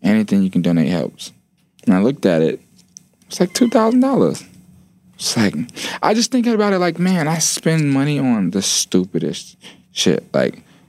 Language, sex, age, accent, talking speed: English, male, 20-39, American, 175 wpm